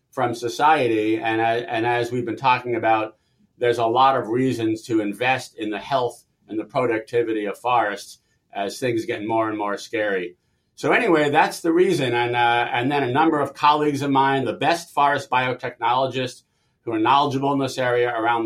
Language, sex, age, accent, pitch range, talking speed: English, male, 50-69, American, 120-145 Hz, 190 wpm